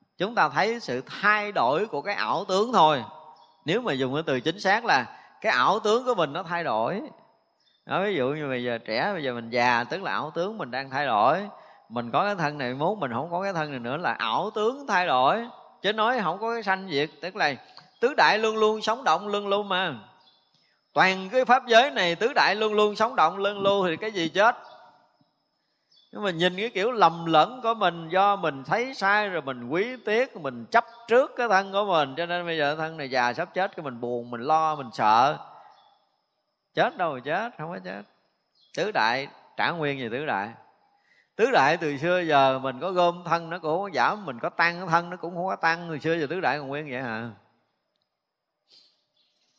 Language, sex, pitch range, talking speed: Vietnamese, male, 140-200 Hz, 220 wpm